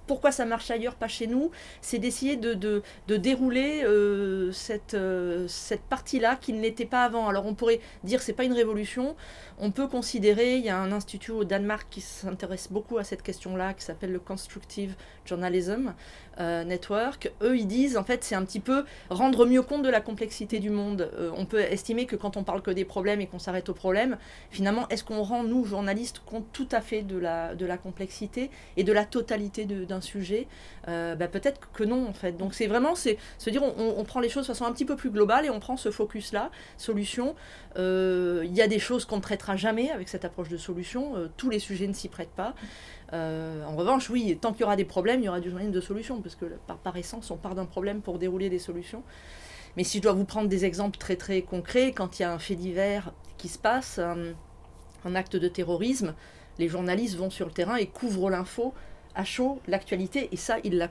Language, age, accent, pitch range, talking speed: French, 30-49, French, 180-235 Hz, 230 wpm